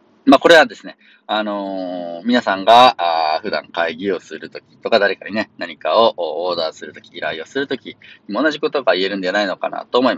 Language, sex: Japanese, male